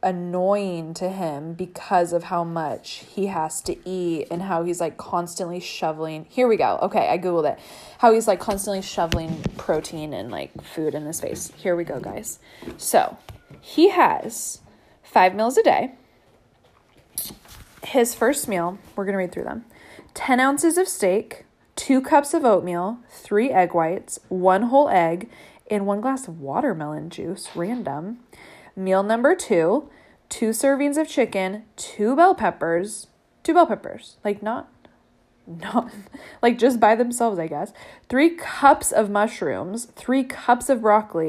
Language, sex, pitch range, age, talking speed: English, female, 180-260 Hz, 20-39, 155 wpm